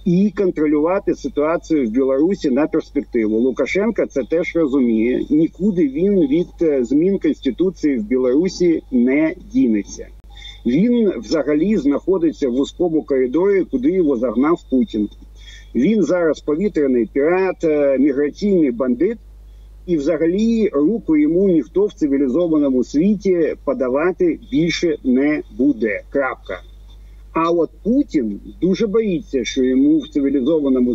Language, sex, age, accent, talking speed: Ukrainian, male, 50-69, native, 110 wpm